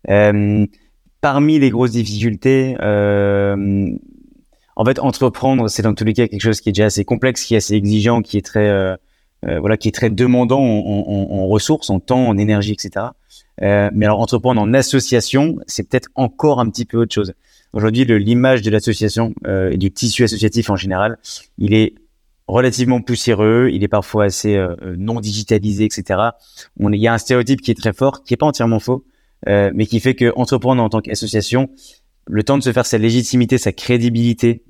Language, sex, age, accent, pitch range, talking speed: French, male, 30-49, French, 100-120 Hz, 195 wpm